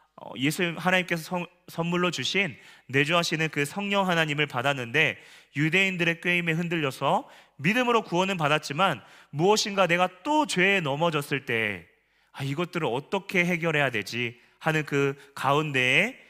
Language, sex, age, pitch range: Korean, male, 30-49, 135-180 Hz